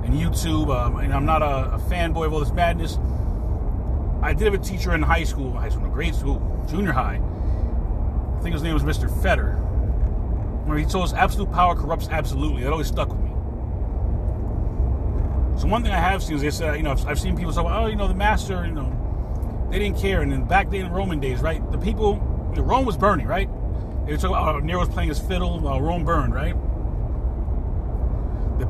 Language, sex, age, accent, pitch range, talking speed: English, male, 30-49, American, 75-95 Hz, 215 wpm